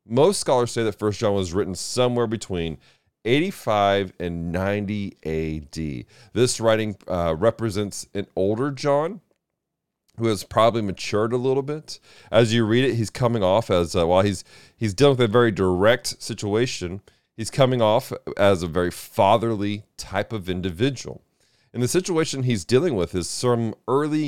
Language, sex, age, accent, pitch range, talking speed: English, male, 40-59, American, 100-135 Hz, 160 wpm